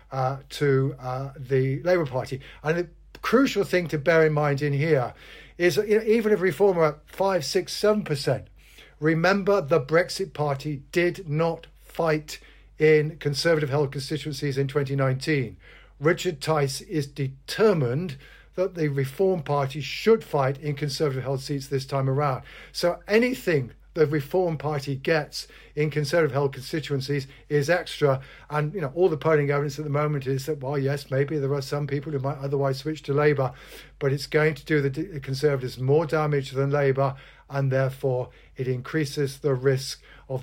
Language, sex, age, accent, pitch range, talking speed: English, male, 50-69, British, 135-165 Hz, 170 wpm